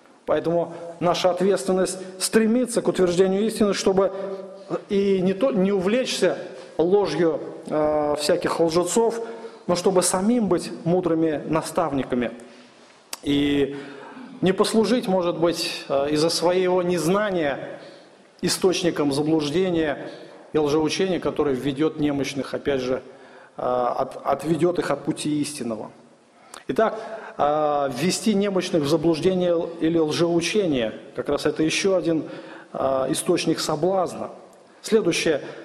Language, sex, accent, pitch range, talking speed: Russian, male, native, 165-220 Hz, 100 wpm